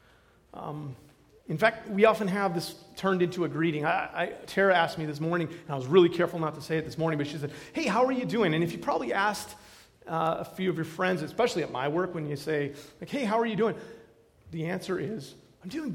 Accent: American